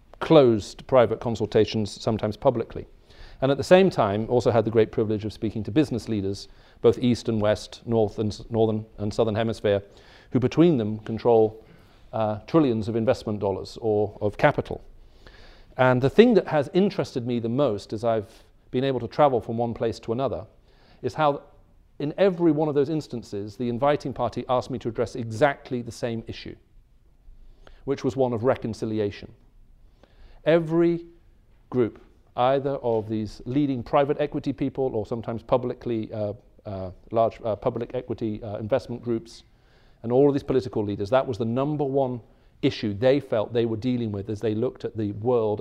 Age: 40-59